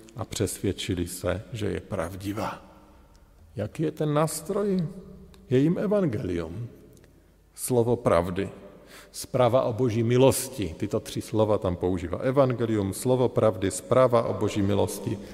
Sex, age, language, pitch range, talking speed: male, 50-69, Slovak, 100-130 Hz, 120 wpm